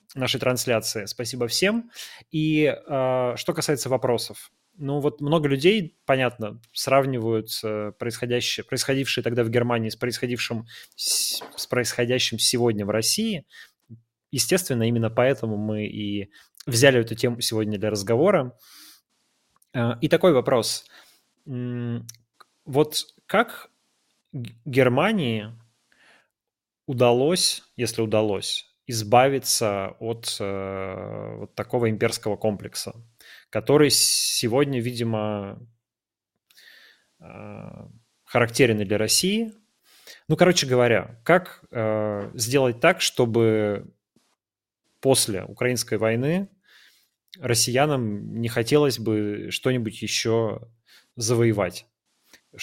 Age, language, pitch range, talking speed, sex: 20-39, Russian, 110-135 Hz, 85 wpm, male